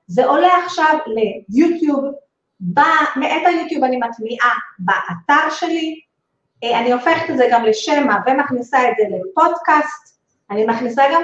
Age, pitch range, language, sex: 30-49, 240-340 Hz, Hebrew, female